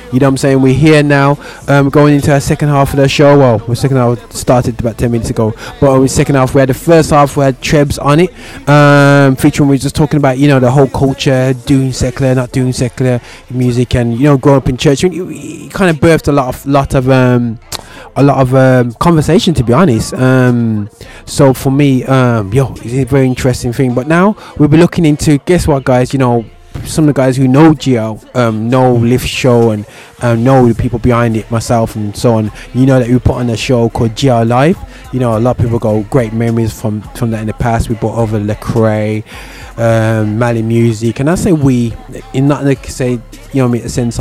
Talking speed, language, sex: 240 wpm, English, male